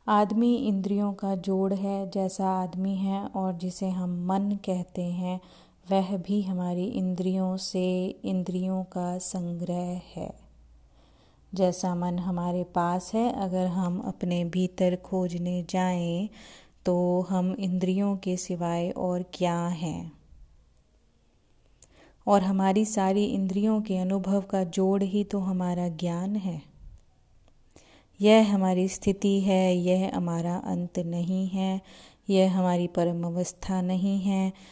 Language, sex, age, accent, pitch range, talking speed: Hindi, female, 30-49, native, 175-195 Hz, 120 wpm